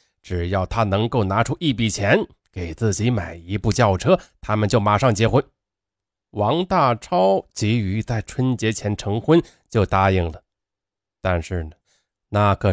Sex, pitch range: male, 100-130 Hz